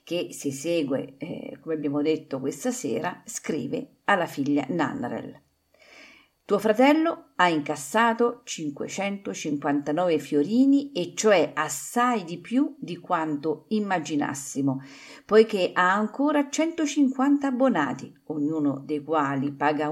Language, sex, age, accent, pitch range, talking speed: Italian, female, 50-69, native, 150-215 Hz, 110 wpm